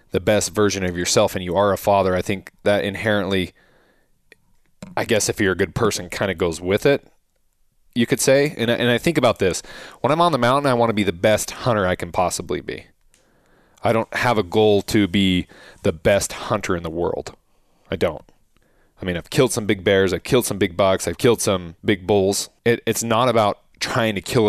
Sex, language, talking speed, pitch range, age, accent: male, English, 220 wpm, 95-120 Hz, 20-39, American